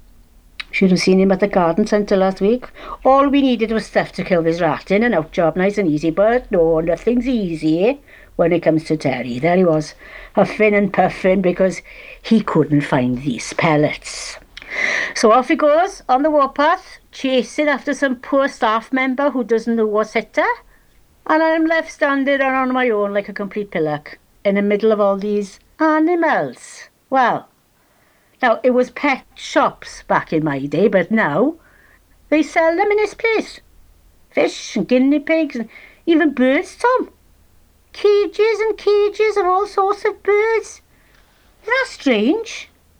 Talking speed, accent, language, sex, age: 165 wpm, British, English, female, 60-79